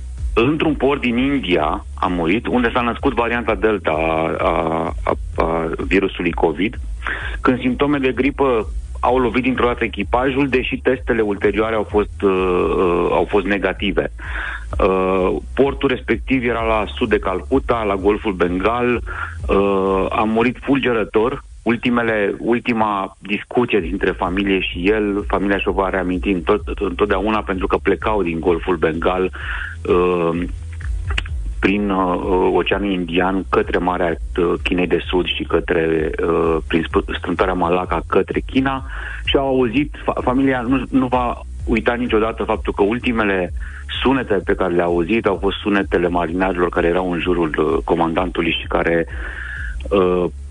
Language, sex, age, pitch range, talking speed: Romanian, male, 30-49, 85-120 Hz, 135 wpm